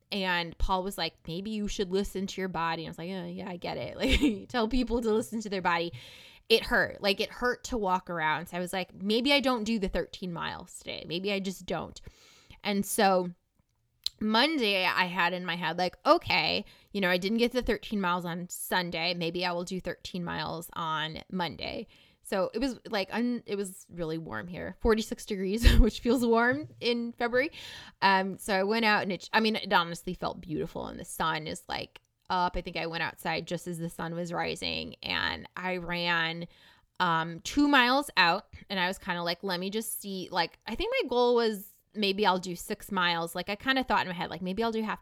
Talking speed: 225 wpm